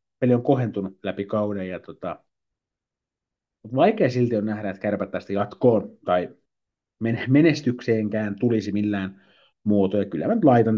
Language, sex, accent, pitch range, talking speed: Finnish, male, native, 100-130 Hz, 115 wpm